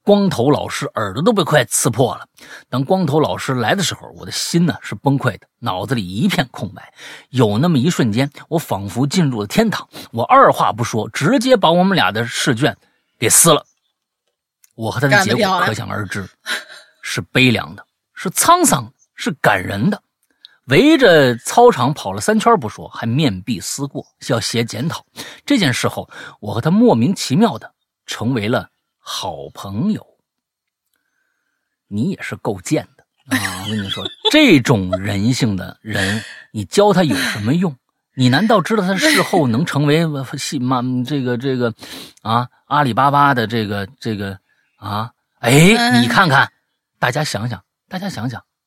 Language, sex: Chinese, male